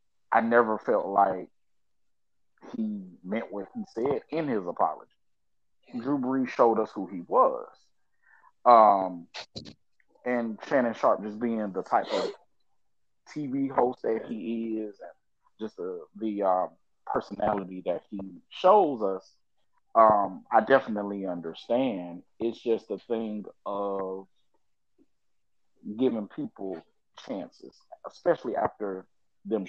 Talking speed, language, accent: 115 wpm, English, American